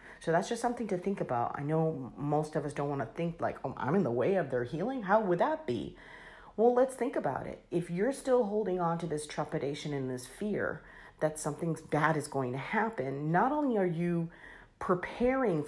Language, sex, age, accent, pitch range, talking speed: English, female, 40-59, American, 140-190 Hz, 220 wpm